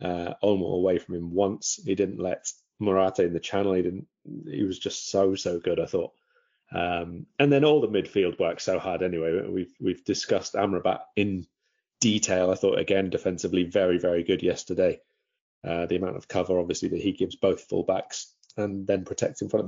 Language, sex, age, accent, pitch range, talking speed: English, male, 30-49, British, 95-135 Hz, 200 wpm